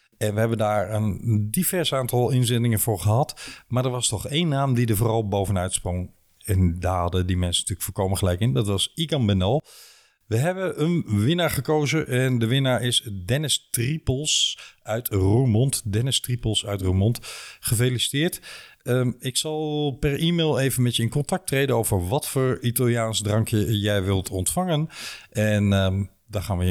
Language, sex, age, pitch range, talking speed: Dutch, male, 50-69, 100-130 Hz, 175 wpm